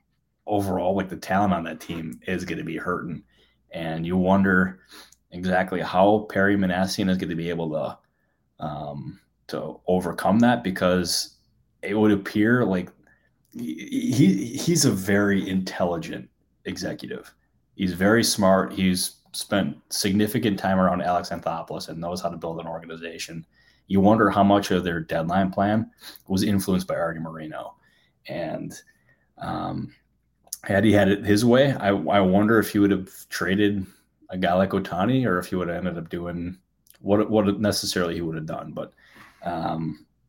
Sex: male